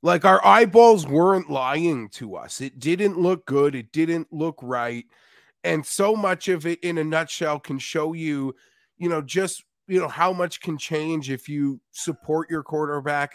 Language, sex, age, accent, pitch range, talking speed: English, male, 30-49, American, 150-190 Hz, 180 wpm